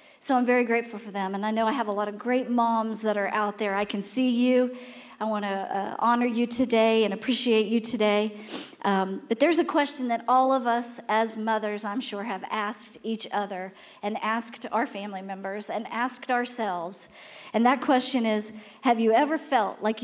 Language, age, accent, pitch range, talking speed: English, 40-59, American, 210-250 Hz, 205 wpm